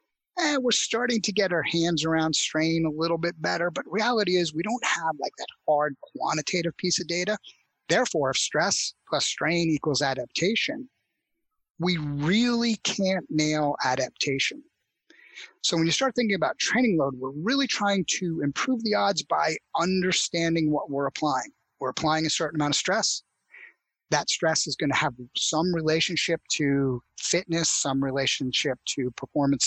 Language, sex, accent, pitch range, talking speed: English, male, American, 145-185 Hz, 160 wpm